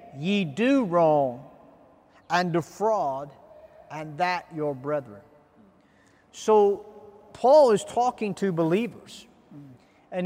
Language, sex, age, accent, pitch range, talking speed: English, male, 40-59, American, 170-230 Hz, 95 wpm